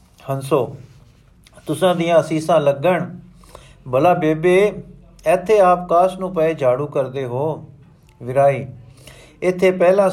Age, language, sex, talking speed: 50-69, Punjabi, male, 105 wpm